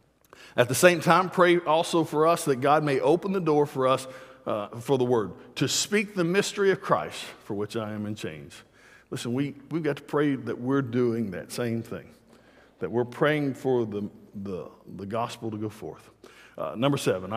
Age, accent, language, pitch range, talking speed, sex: 50-69, American, English, 115-155 Hz, 200 wpm, male